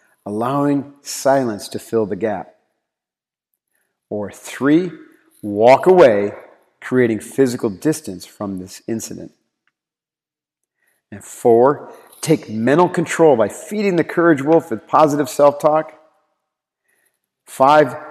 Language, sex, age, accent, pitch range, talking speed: English, male, 40-59, American, 110-150 Hz, 100 wpm